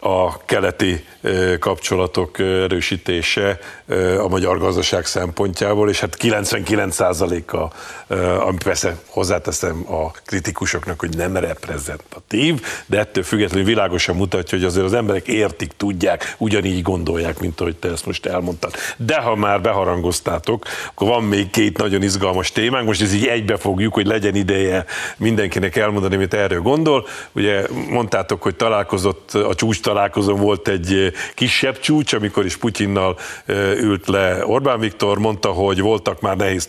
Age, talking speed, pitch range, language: 50-69, 135 wpm, 95-105 Hz, Hungarian